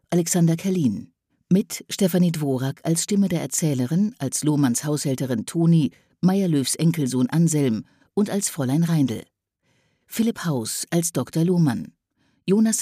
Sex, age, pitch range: female, 50-69, 135-180 Hz